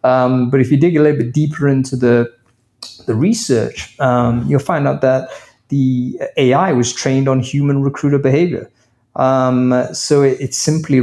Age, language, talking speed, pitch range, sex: 30-49, English, 170 wpm, 120-135 Hz, male